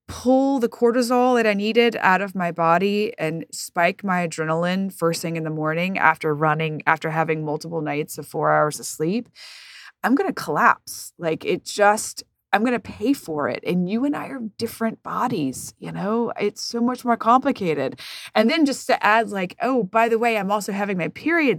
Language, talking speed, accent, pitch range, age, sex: English, 200 wpm, American, 165-240 Hz, 20-39, female